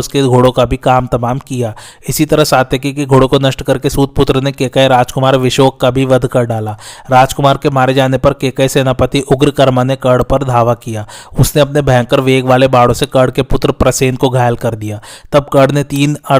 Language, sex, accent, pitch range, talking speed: Hindi, male, native, 125-140 Hz, 90 wpm